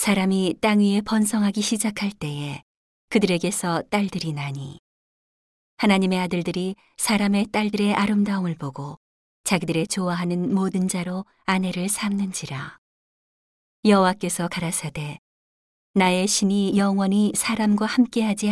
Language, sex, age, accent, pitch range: Korean, female, 40-59, native, 165-205 Hz